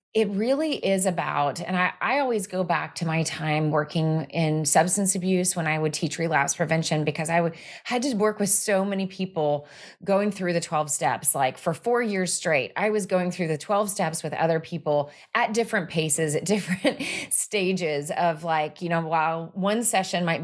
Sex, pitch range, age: female, 155-195 Hz, 30-49